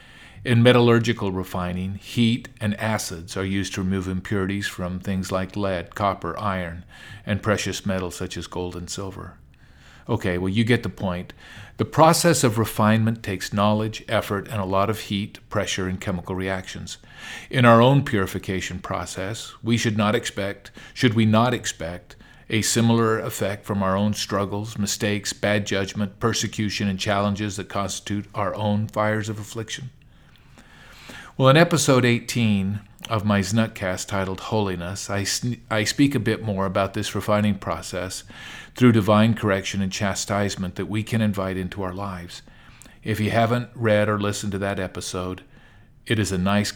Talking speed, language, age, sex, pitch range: 160 wpm, English, 50-69, male, 95-110 Hz